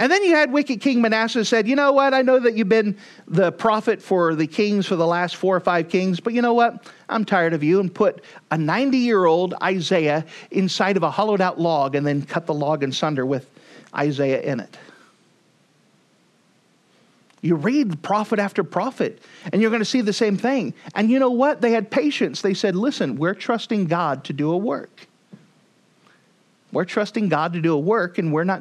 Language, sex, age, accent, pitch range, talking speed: English, male, 40-59, American, 165-235 Hz, 210 wpm